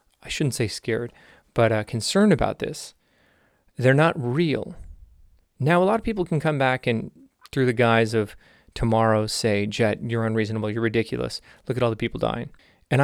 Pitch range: 110-135 Hz